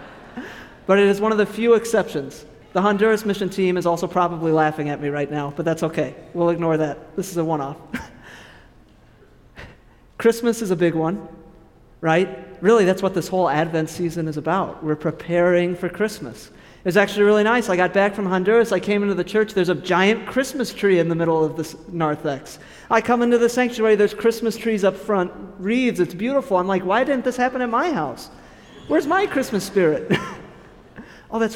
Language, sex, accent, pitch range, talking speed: English, male, American, 165-225 Hz, 190 wpm